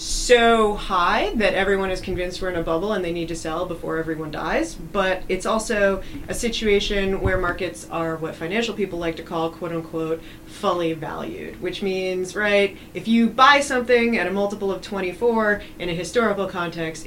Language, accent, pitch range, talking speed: English, American, 160-195 Hz, 185 wpm